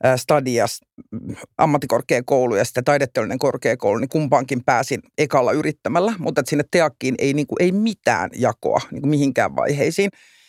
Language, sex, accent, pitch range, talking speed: Finnish, male, native, 140-200 Hz, 125 wpm